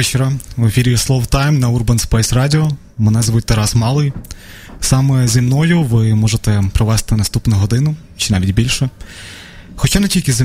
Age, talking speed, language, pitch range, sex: 20-39, 155 wpm, Ukrainian, 110-135 Hz, male